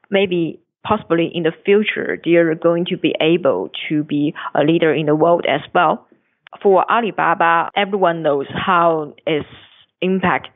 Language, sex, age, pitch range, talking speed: English, female, 20-39, 160-195 Hz, 150 wpm